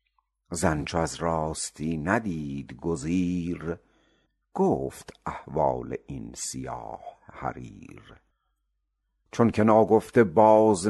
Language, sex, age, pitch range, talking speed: Persian, male, 60-79, 80-100 Hz, 85 wpm